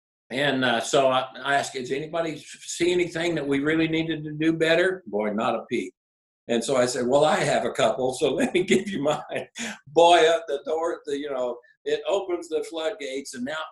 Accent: American